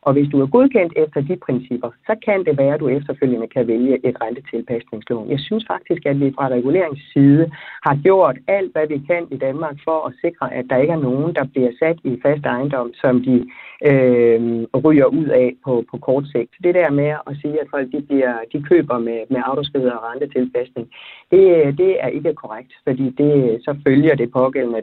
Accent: native